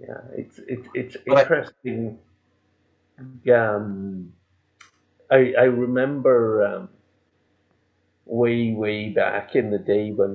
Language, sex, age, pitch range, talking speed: English, male, 50-69, 100-125 Hz, 100 wpm